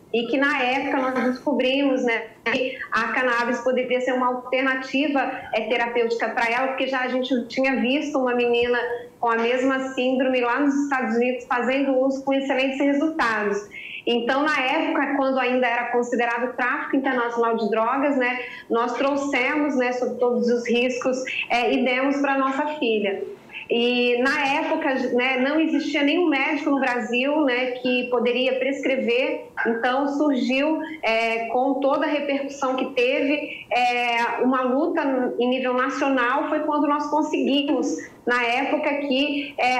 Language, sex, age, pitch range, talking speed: Portuguese, female, 30-49, 245-275 Hz, 150 wpm